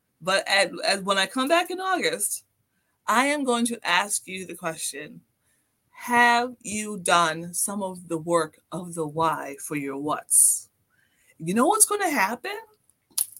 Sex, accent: female, American